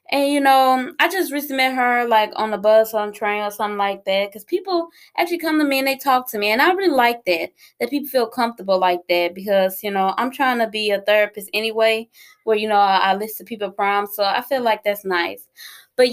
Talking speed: 255 wpm